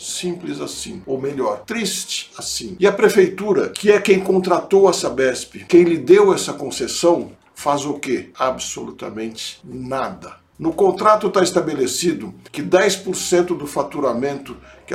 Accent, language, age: Brazilian, Portuguese, 60-79